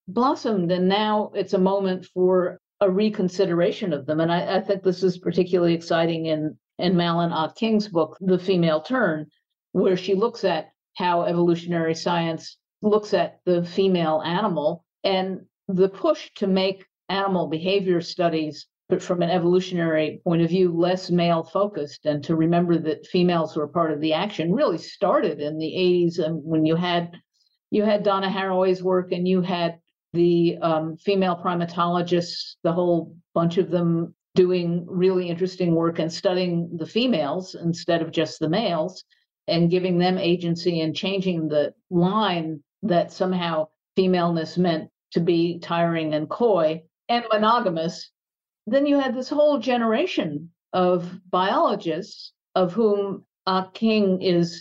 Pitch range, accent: 165-195 Hz, American